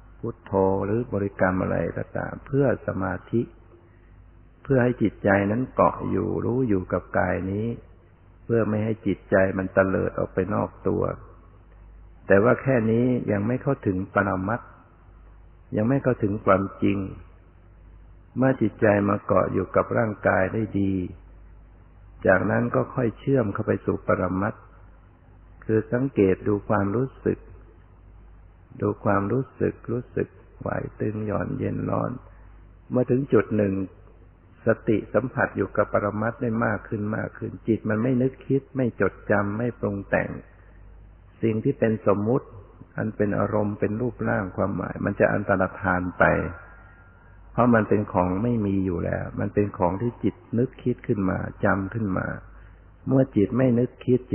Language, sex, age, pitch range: Thai, male, 60-79, 95-115 Hz